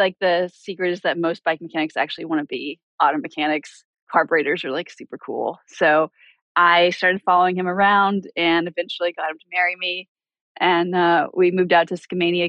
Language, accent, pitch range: English, American, 165-195 Hz